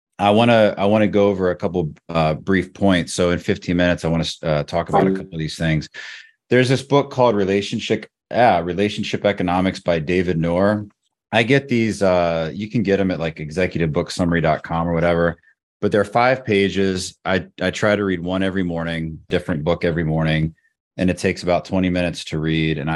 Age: 30-49